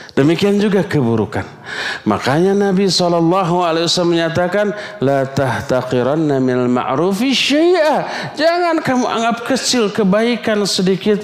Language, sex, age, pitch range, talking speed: Malay, male, 50-69, 150-230 Hz, 100 wpm